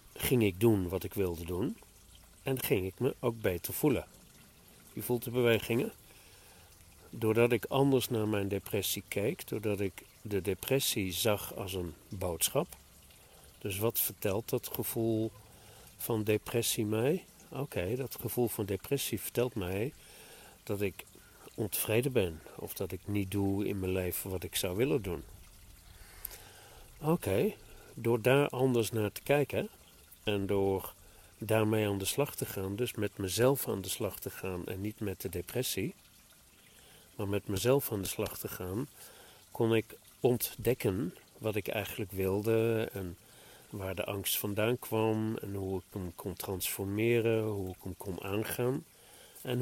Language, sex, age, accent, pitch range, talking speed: Dutch, male, 50-69, Dutch, 95-115 Hz, 150 wpm